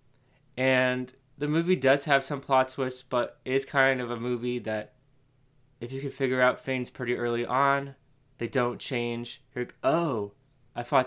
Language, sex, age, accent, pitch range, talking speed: English, male, 20-39, American, 120-135 Hz, 180 wpm